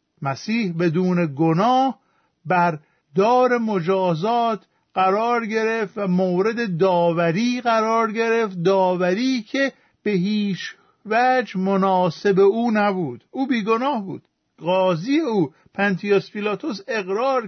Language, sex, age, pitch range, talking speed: Persian, male, 50-69, 185-235 Hz, 105 wpm